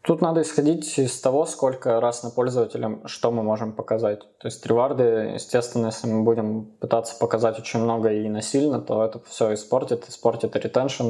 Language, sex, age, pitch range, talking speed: Russian, male, 20-39, 110-120 Hz, 175 wpm